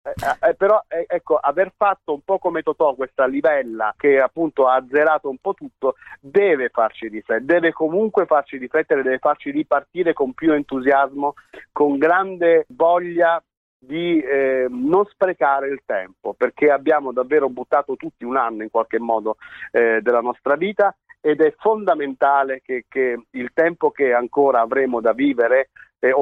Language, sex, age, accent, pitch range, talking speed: Italian, male, 50-69, native, 125-190 Hz, 160 wpm